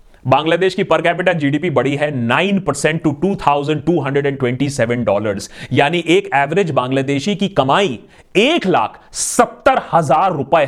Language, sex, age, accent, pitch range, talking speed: Hindi, male, 30-49, native, 140-225 Hz, 130 wpm